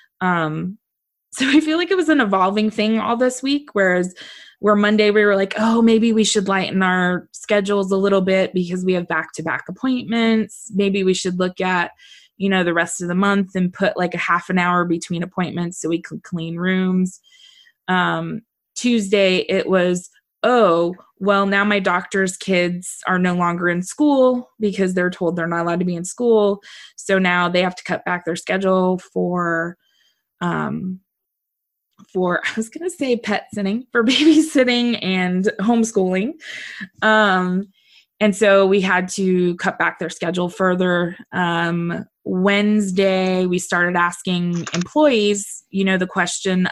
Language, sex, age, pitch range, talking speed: English, female, 20-39, 175-210 Hz, 165 wpm